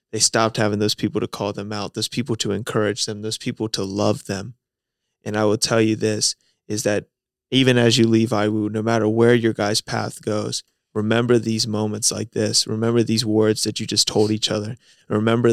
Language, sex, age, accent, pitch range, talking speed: English, male, 20-39, American, 105-115 Hz, 210 wpm